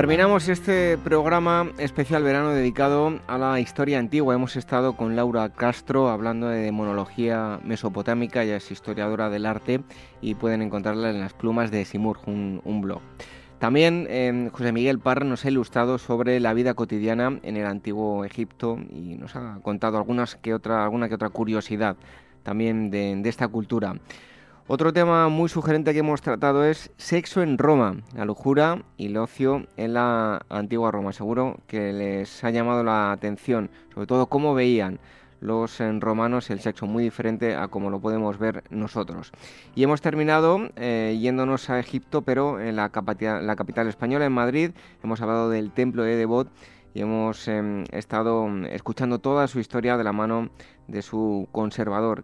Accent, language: Spanish, Spanish